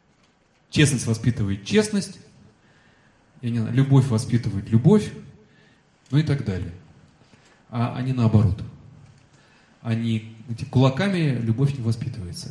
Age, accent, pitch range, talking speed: 30-49, native, 120-160 Hz, 85 wpm